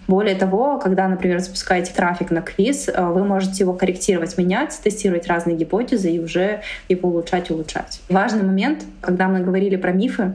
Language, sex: Russian, female